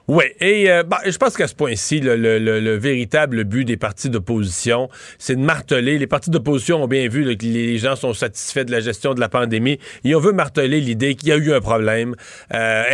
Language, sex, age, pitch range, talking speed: French, male, 30-49, 115-150 Hz, 235 wpm